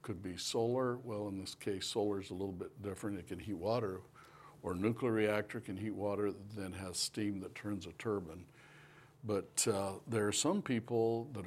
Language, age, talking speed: English, 60-79, 205 wpm